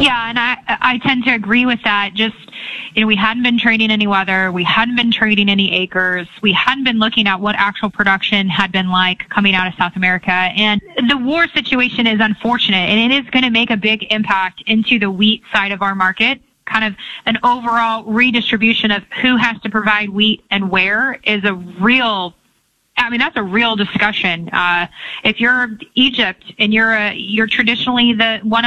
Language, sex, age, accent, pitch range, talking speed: English, female, 20-39, American, 210-245 Hz, 200 wpm